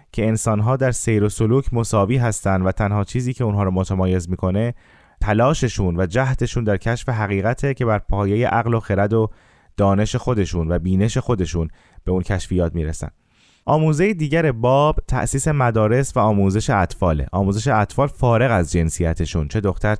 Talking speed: 160 wpm